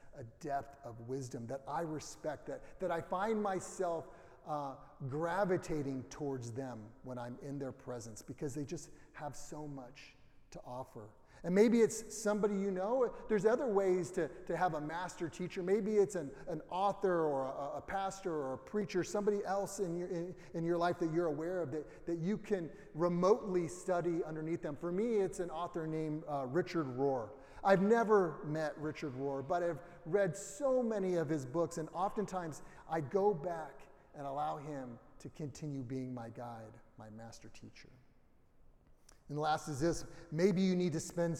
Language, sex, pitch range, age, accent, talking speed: English, male, 140-185 Hz, 30-49, American, 180 wpm